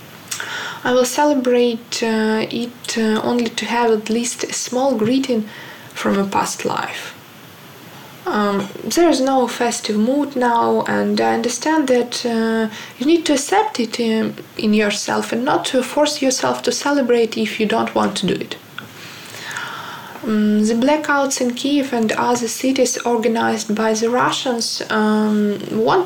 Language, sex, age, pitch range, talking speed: Ukrainian, female, 20-39, 220-275 Hz, 150 wpm